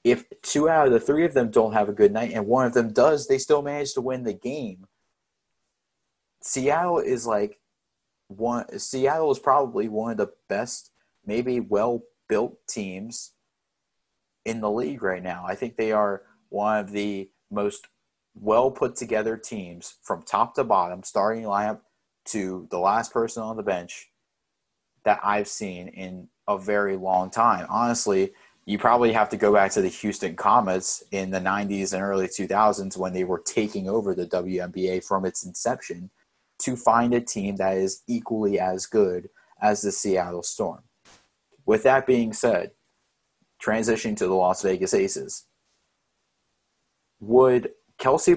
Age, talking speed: 30-49, 160 wpm